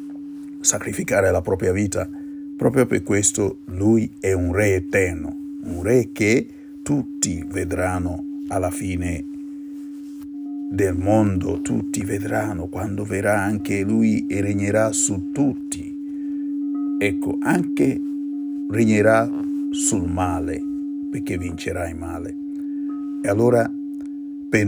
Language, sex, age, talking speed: Italian, male, 50-69, 105 wpm